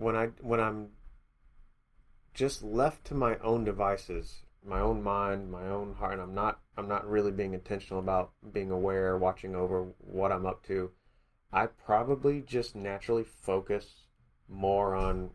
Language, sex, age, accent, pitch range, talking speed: English, male, 30-49, American, 90-105 Hz, 155 wpm